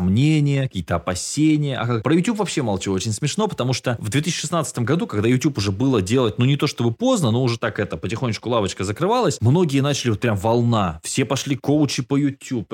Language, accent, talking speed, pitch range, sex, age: Russian, native, 195 wpm, 100-140 Hz, male, 20-39